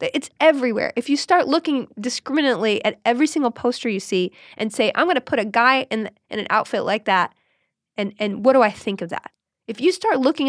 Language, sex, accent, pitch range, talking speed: English, female, American, 205-265 Hz, 225 wpm